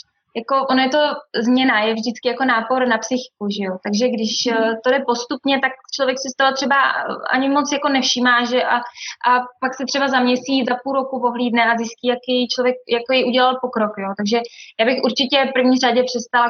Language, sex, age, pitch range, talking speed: Czech, female, 20-39, 225-260 Hz, 195 wpm